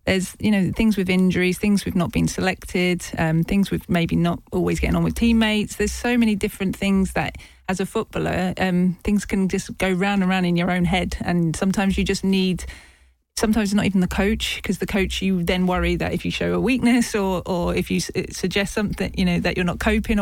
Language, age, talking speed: English, 30-49, 225 wpm